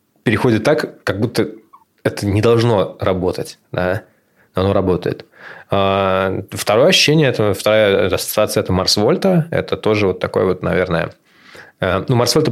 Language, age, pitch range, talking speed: Russian, 20-39, 100-125 Hz, 120 wpm